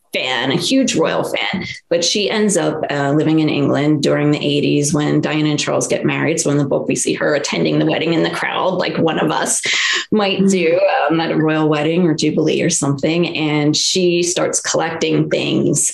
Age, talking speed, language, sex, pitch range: 20-39, 205 wpm, English, female, 155-185 Hz